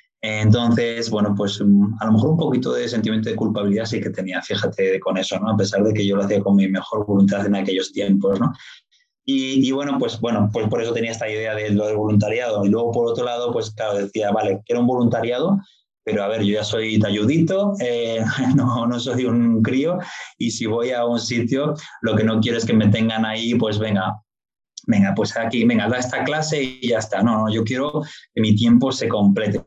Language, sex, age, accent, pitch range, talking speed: Spanish, male, 20-39, Spanish, 105-130 Hz, 220 wpm